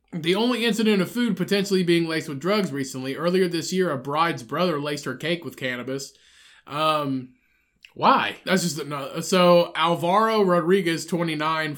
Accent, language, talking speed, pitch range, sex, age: American, English, 160 wpm, 145-180 Hz, male, 20-39